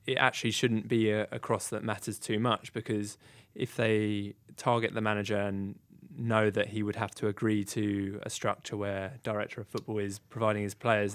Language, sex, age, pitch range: English, male, 20-39, 105-115 Hz